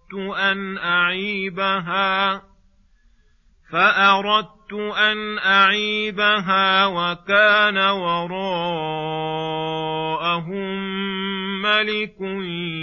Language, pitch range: Arabic, 160-200 Hz